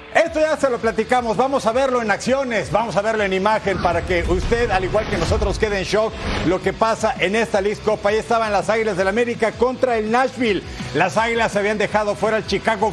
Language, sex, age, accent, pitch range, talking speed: Spanish, male, 50-69, Mexican, 210-270 Hz, 230 wpm